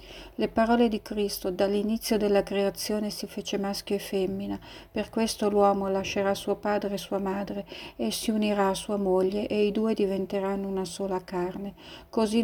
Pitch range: 195-215 Hz